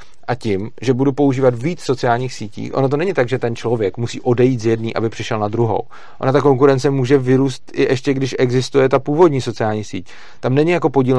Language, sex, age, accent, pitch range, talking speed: Czech, male, 40-59, native, 115-135 Hz, 215 wpm